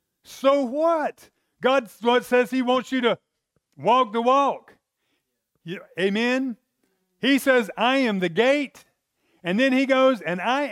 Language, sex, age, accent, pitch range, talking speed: English, male, 50-69, American, 165-220 Hz, 135 wpm